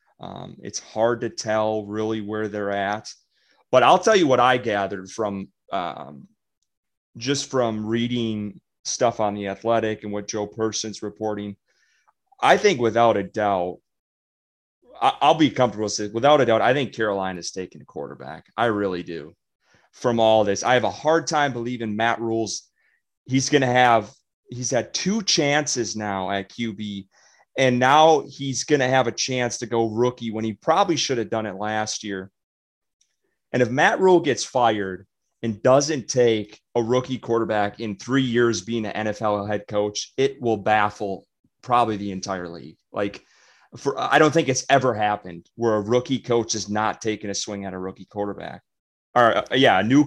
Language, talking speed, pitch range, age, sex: English, 175 wpm, 105-125 Hz, 30-49, male